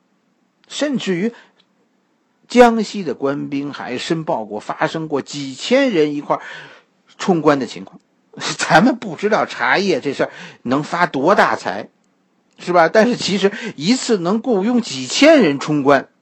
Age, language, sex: 50-69, Chinese, male